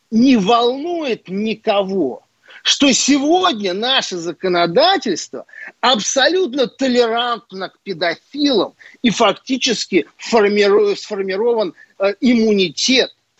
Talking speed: 65 wpm